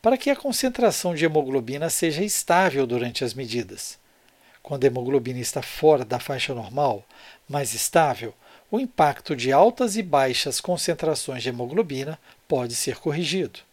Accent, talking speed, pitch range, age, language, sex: Brazilian, 145 wpm, 135-185 Hz, 60-79, Portuguese, male